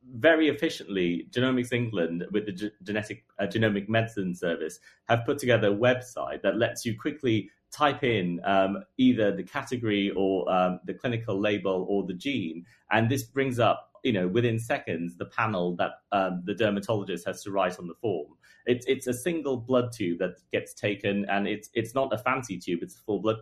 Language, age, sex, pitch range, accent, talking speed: English, 30-49, male, 100-125 Hz, British, 185 wpm